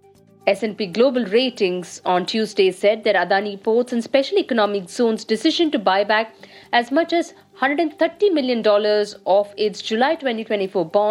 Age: 50-69